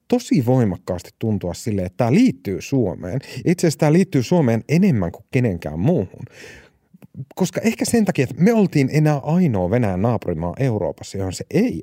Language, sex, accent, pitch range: Finnish, male, native, 105-160 Hz